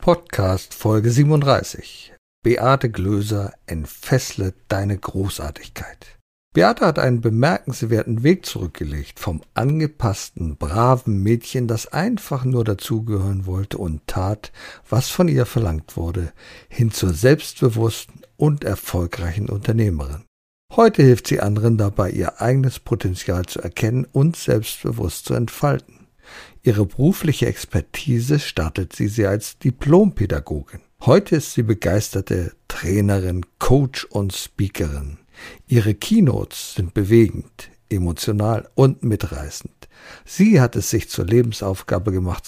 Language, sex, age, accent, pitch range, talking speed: German, male, 50-69, German, 90-125 Hz, 115 wpm